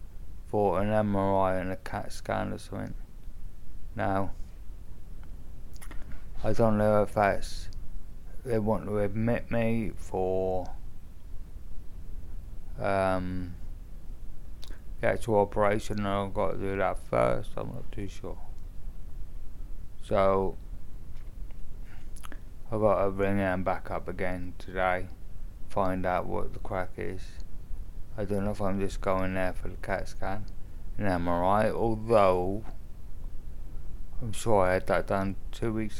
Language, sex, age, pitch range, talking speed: English, male, 20-39, 85-100 Hz, 125 wpm